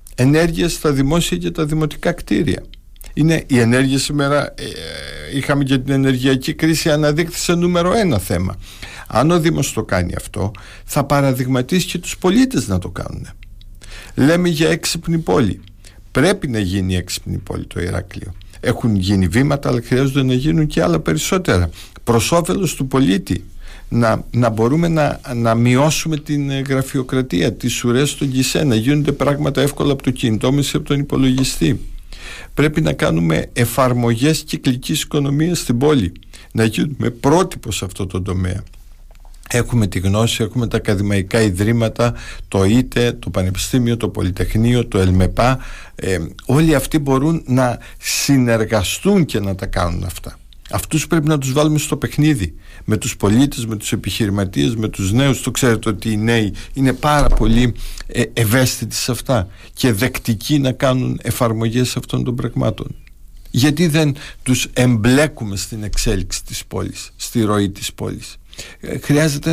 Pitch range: 105-145 Hz